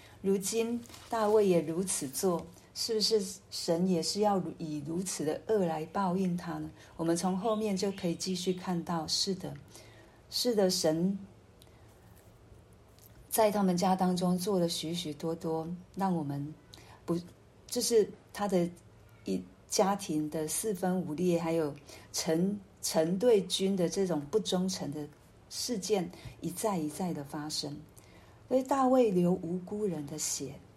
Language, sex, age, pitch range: Chinese, female, 40-59, 150-195 Hz